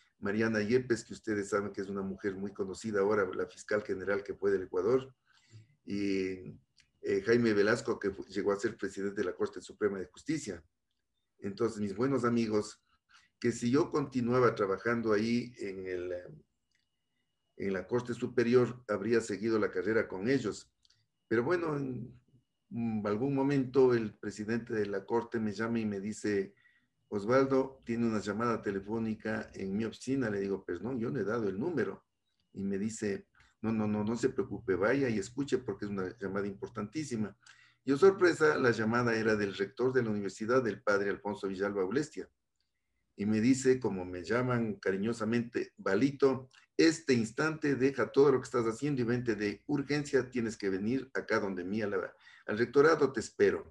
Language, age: Spanish, 50-69